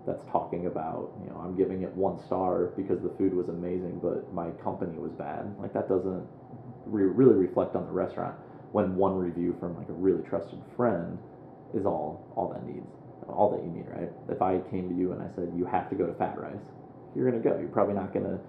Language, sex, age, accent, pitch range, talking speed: English, male, 30-49, American, 90-105 Hz, 225 wpm